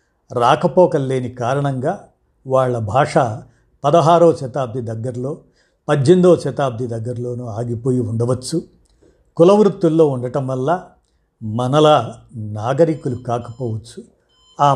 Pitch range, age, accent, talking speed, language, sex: 115-145 Hz, 50-69, native, 75 wpm, Telugu, male